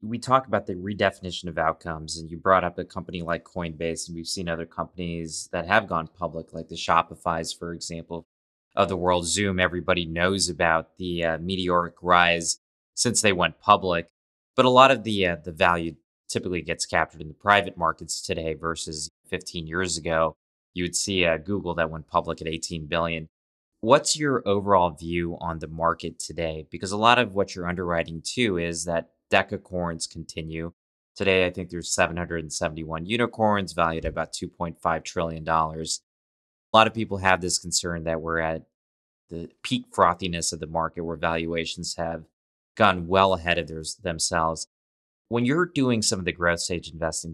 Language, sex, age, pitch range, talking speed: English, male, 20-39, 80-90 Hz, 180 wpm